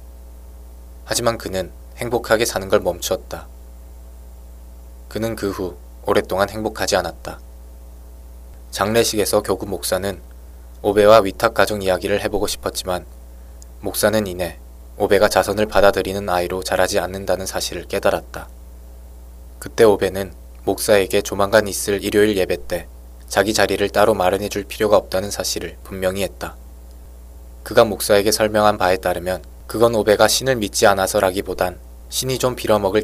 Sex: male